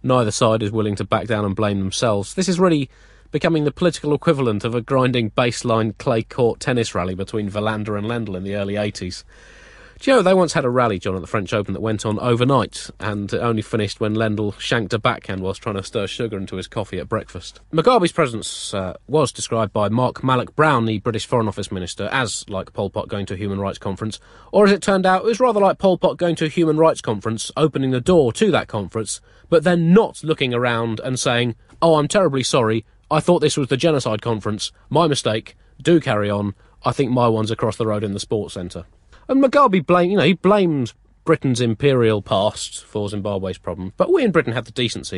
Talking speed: 220 wpm